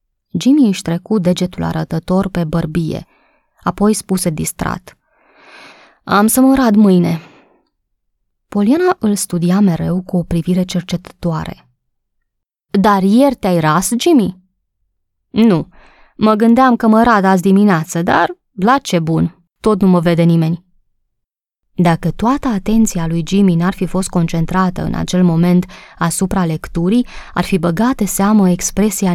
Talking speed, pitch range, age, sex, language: 130 wpm, 170-205 Hz, 20-39, female, Romanian